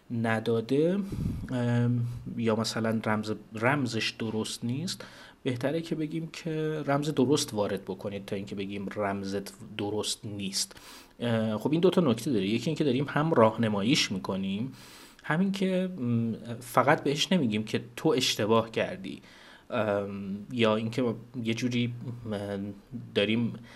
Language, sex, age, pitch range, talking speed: Persian, male, 30-49, 110-145 Hz, 120 wpm